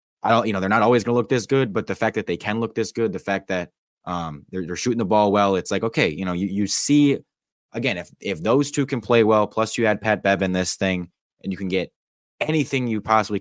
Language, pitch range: English, 85-105 Hz